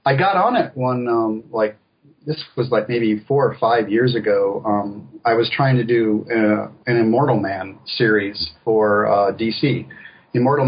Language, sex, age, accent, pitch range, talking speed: English, male, 40-59, American, 110-140 Hz, 175 wpm